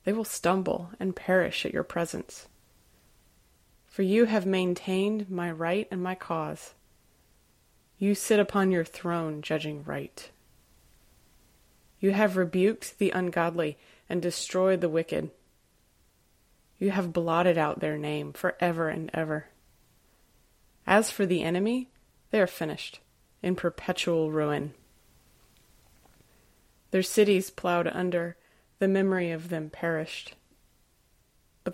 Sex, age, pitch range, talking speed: female, 30-49, 170-200 Hz, 115 wpm